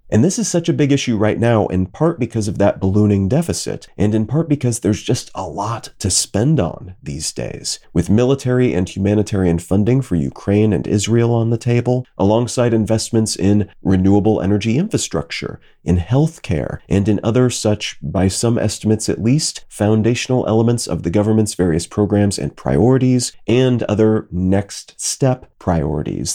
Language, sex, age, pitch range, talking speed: English, male, 40-59, 95-120 Hz, 165 wpm